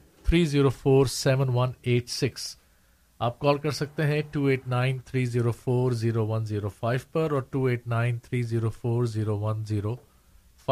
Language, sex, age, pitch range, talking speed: Urdu, male, 50-69, 115-145 Hz, 60 wpm